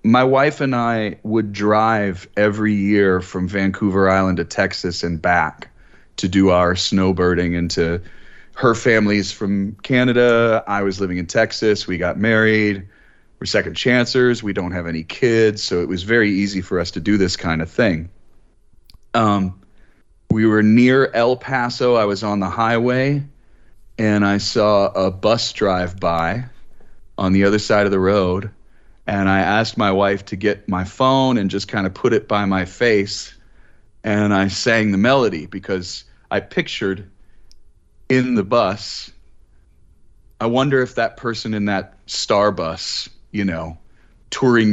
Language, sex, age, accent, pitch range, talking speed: Dutch, male, 30-49, American, 95-110 Hz, 160 wpm